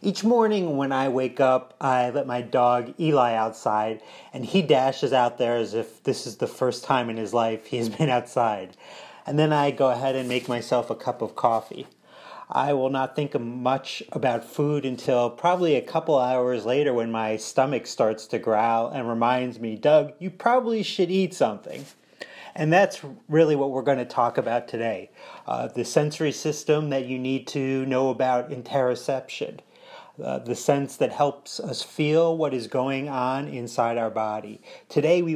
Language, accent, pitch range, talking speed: English, American, 120-145 Hz, 185 wpm